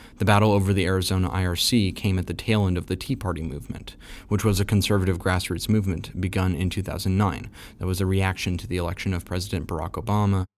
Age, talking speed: 30-49, 205 wpm